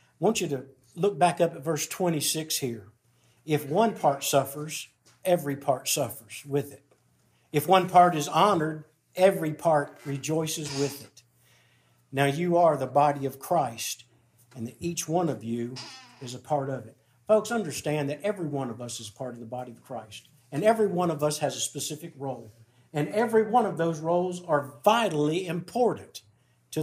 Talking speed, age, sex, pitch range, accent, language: 180 wpm, 50-69, male, 135-180 Hz, American, English